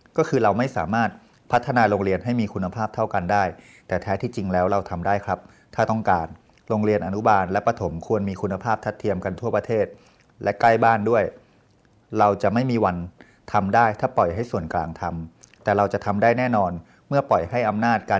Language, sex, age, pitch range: Thai, male, 30-49, 100-120 Hz